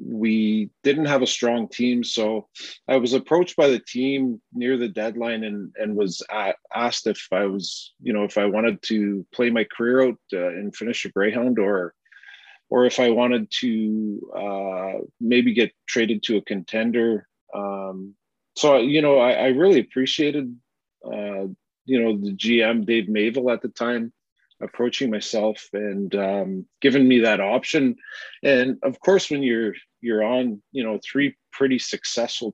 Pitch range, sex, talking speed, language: 105-125 Hz, male, 170 wpm, English